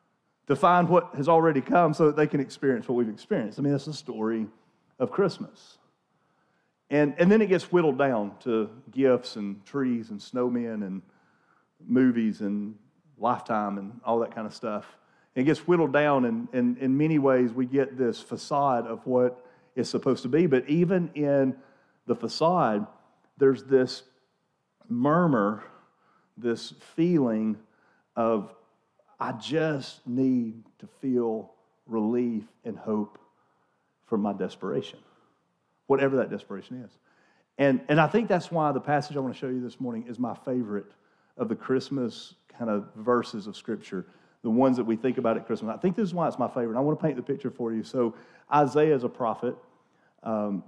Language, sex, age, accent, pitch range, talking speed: English, male, 40-59, American, 115-145 Hz, 175 wpm